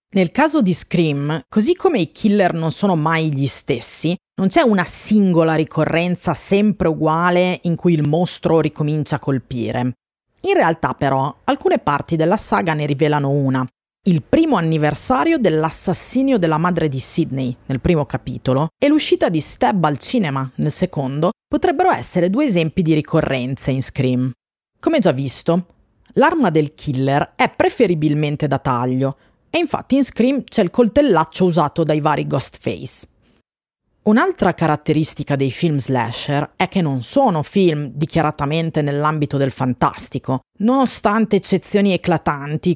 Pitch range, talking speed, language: 145-205 Hz, 145 wpm, Italian